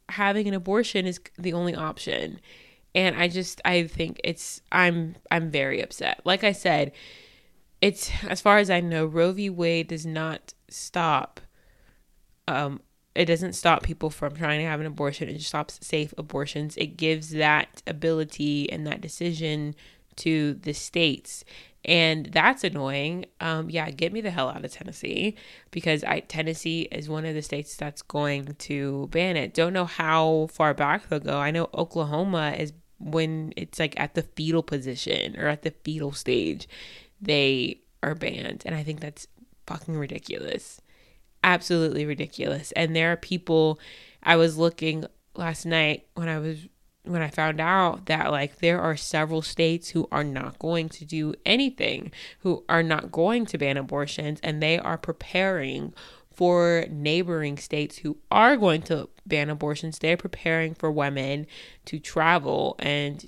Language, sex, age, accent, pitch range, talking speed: English, female, 20-39, American, 150-170 Hz, 165 wpm